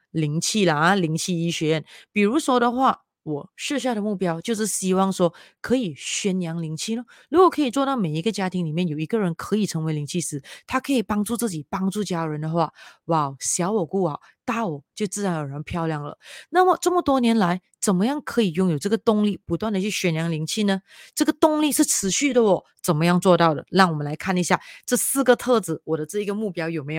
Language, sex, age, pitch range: Chinese, female, 30-49, 170-245 Hz